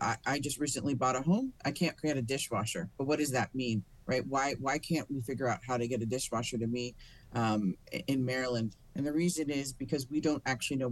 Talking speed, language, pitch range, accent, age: 230 wpm, English, 120-145 Hz, American, 40-59